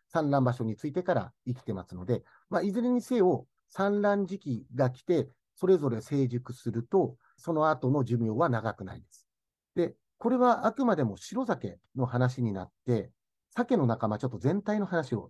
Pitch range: 110-180 Hz